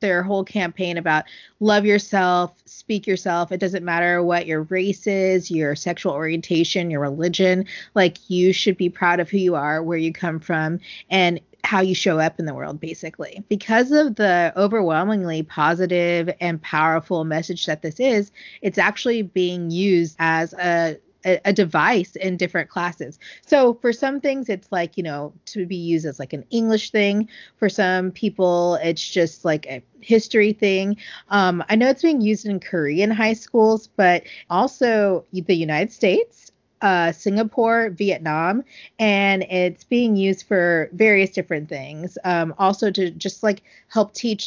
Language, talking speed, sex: English, 165 wpm, female